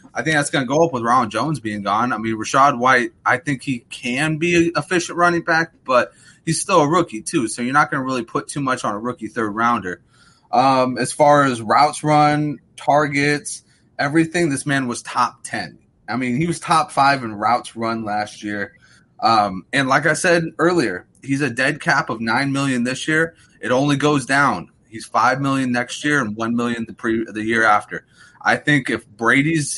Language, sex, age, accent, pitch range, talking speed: English, male, 20-39, American, 110-145 Hz, 210 wpm